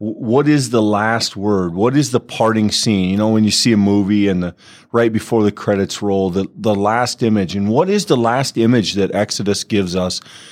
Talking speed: 215 wpm